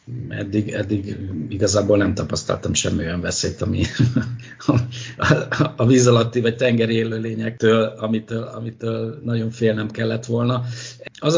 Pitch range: 105-125 Hz